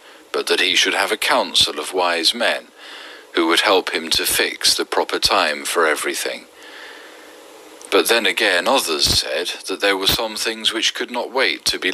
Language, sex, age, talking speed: Persian, male, 40-59, 185 wpm